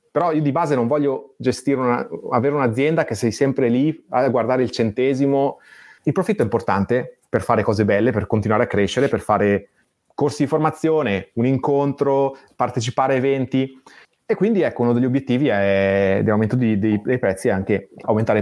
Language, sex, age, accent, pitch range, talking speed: Italian, male, 30-49, native, 110-145 Hz, 175 wpm